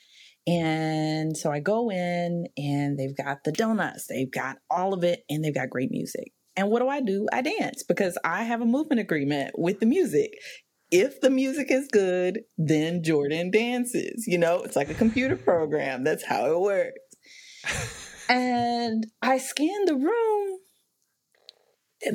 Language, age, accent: English, 30-49, American